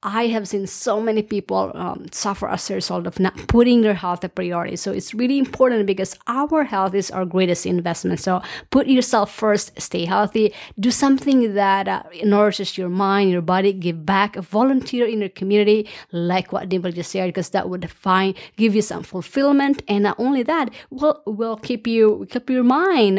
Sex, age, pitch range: female, 30-49, 185-235 Hz